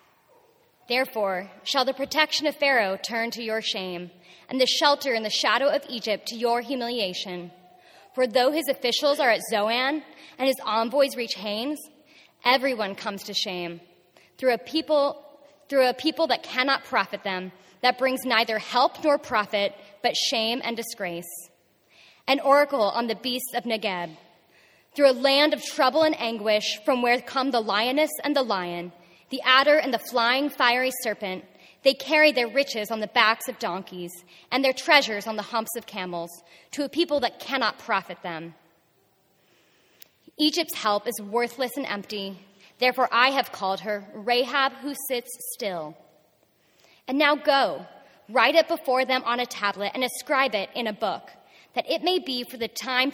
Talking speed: 165 wpm